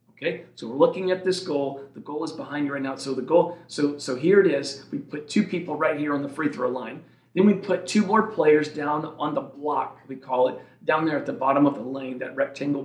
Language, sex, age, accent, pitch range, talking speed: English, male, 40-59, American, 135-175 Hz, 260 wpm